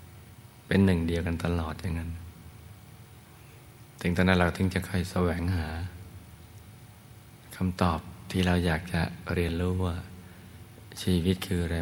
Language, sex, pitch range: Thai, male, 85-105 Hz